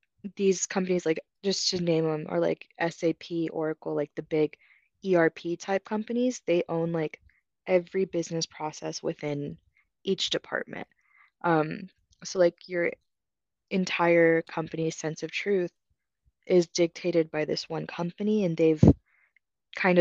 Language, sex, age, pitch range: English, female, 20-39, 160-180 Hz